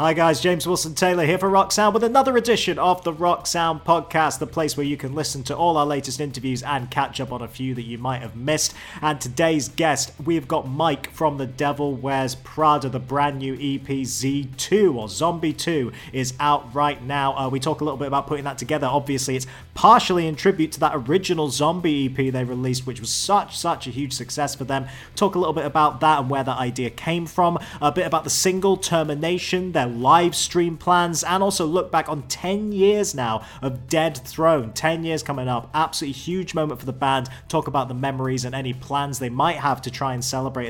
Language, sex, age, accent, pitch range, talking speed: English, male, 30-49, British, 130-165 Hz, 220 wpm